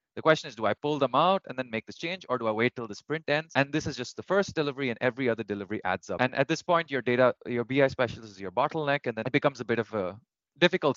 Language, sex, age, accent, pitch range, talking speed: English, male, 30-49, Indian, 115-150 Hz, 300 wpm